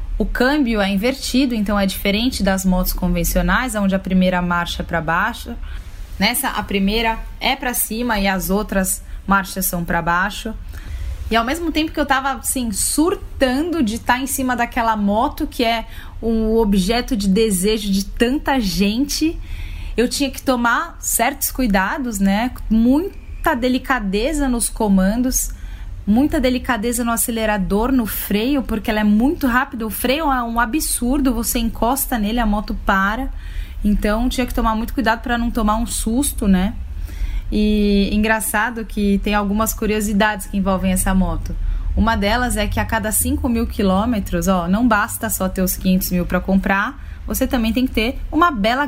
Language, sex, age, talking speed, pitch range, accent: Portuguese, female, 10-29, 165 wpm, 195-250 Hz, Brazilian